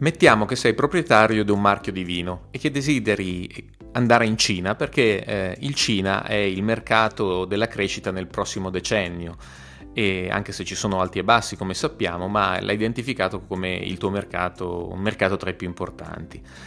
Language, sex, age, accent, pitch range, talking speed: Italian, male, 30-49, native, 90-115 Hz, 180 wpm